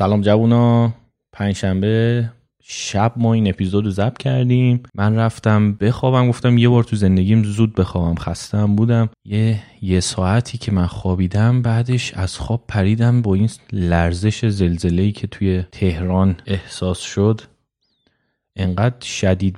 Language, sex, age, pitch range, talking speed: Persian, male, 30-49, 95-120 Hz, 135 wpm